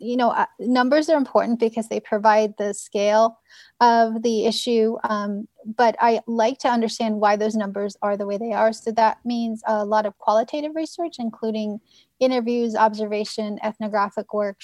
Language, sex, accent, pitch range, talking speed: English, female, American, 210-230 Hz, 165 wpm